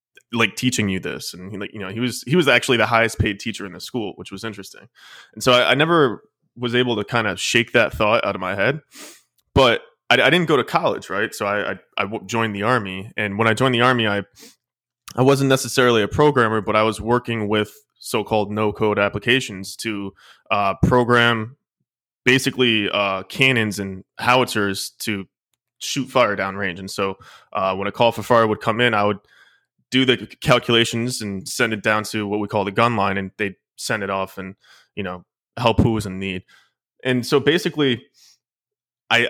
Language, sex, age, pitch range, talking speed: English, male, 20-39, 105-125 Hz, 205 wpm